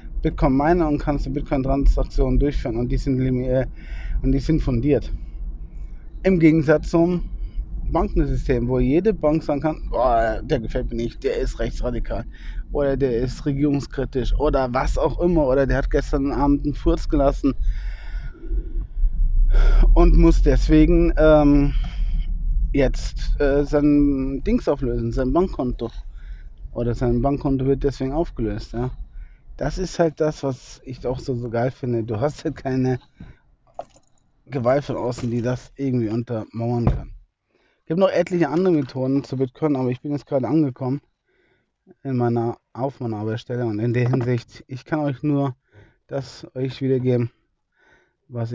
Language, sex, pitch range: German, male, 115-145 Hz